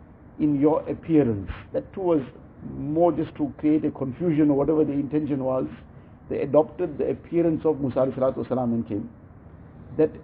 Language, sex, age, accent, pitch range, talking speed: English, male, 50-69, Indian, 130-155 Hz, 160 wpm